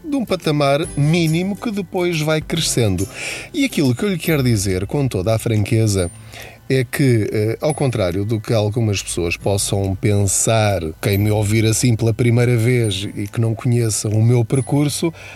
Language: Portuguese